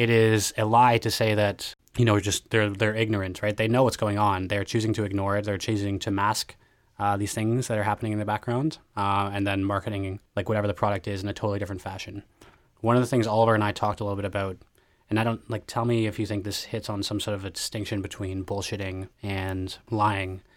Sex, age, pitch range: male, 20-39, 100-115 Hz